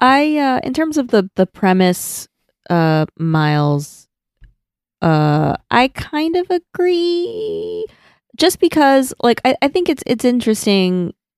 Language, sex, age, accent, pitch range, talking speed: English, female, 20-39, American, 160-240 Hz, 125 wpm